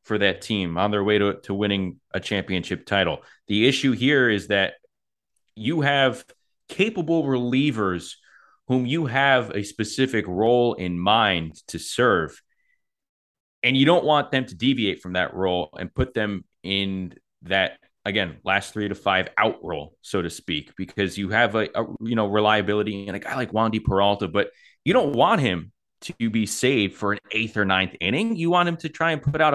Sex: male